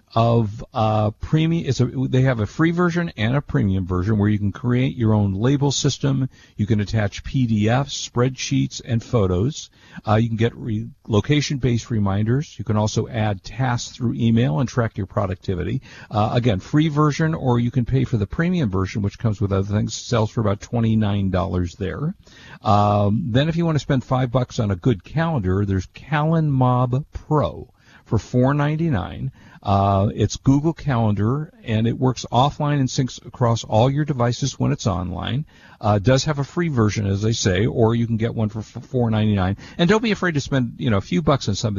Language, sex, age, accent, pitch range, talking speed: English, male, 50-69, American, 105-130 Hz, 195 wpm